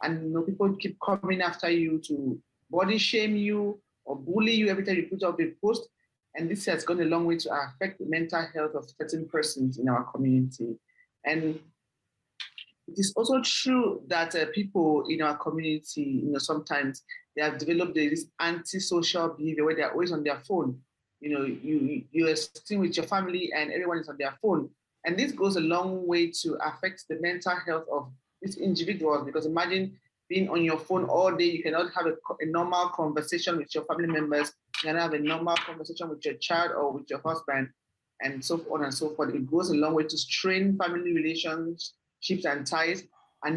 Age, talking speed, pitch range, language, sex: 40-59, 195 wpm, 150-180 Hz, English, male